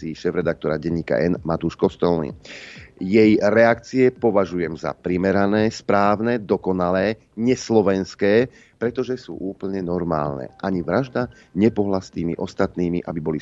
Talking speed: 110 wpm